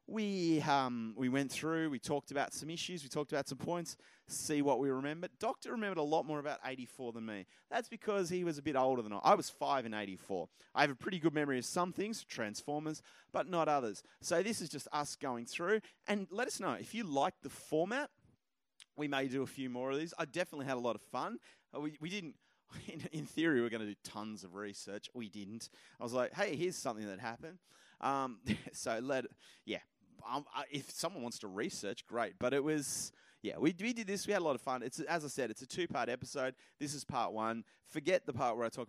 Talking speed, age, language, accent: 240 wpm, 30-49, English, Australian